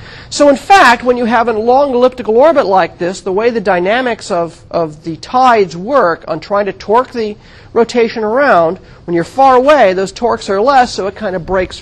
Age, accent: 40-59, American